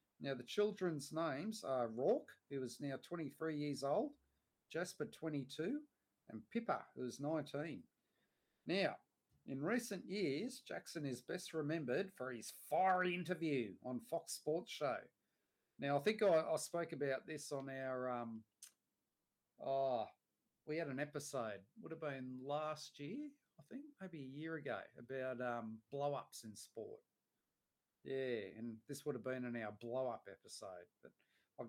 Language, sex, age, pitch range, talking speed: English, male, 40-59, 130-165 Hz, 150 wpm